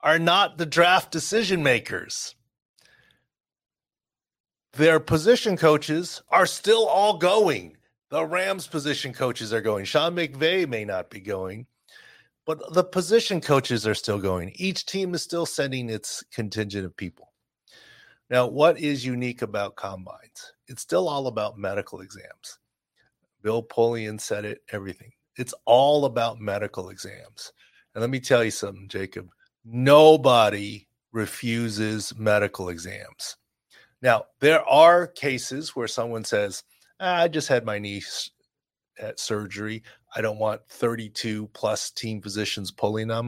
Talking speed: 135 wpm